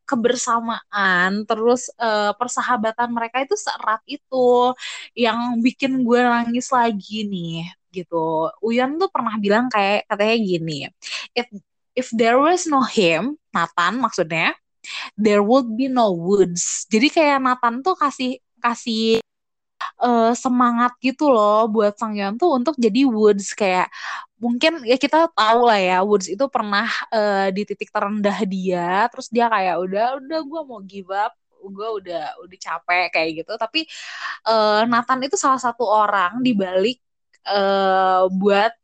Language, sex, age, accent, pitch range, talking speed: Indonesian, female, 20-39, native, 200-250 Hz, 140 wpm